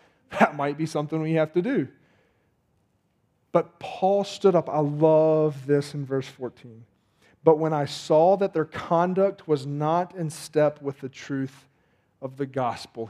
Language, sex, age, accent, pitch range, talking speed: English, male, 40-59, American, 135-160 Hz, 160 wpm